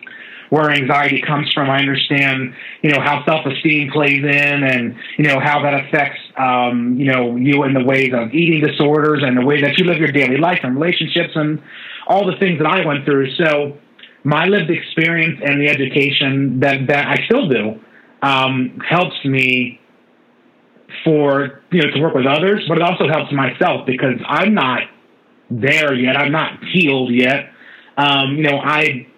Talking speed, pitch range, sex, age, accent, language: 180 wpm, 135-155 Hz, male, 30-49, American, English